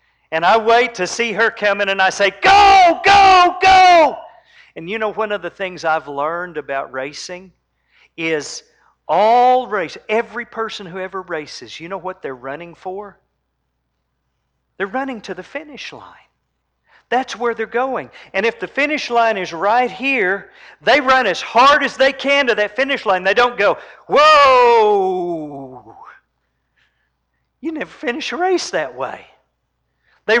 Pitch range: 185-285 Hz